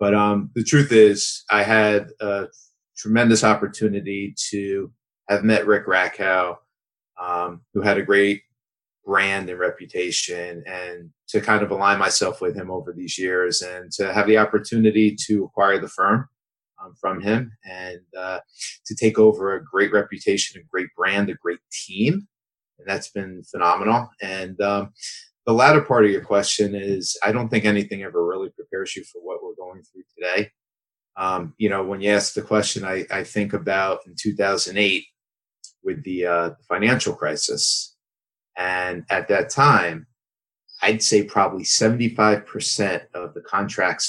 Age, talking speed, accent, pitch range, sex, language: 30-49, 160 wpm, American, 95-110 Hz, male, English